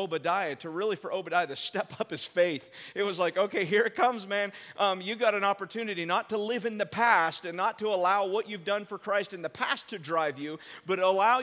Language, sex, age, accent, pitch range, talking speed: English, male, 40-59, American, 195-245 Hz, 240 wpm